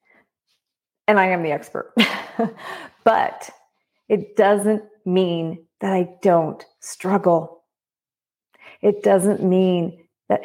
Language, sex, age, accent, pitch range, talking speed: English, female, 40-59, American, 175-220 Hz, 100 wpm